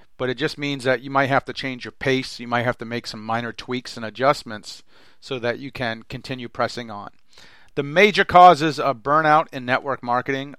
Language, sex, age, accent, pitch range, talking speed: English, male, 40-59, American, 115-140 Hz, 210 wpm